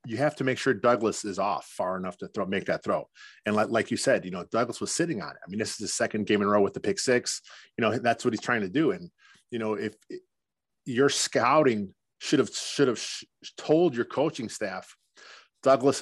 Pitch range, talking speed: 110-140 Hz, 240 wpm